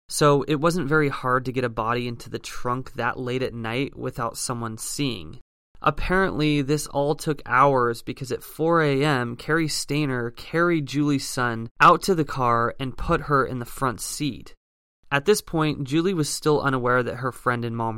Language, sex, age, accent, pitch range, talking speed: English, male, 20-39, American, 125-150 Hz, 185 wpm